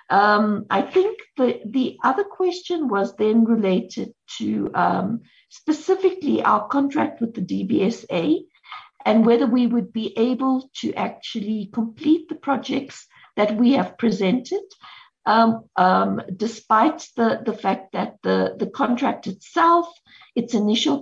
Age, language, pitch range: 50-69, English, 215-285 Hz